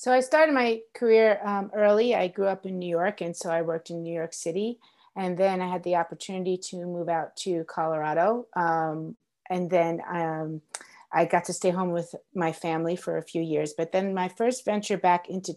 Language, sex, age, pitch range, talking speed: English, female, 30-49, 170-200 Hz, 210 wpm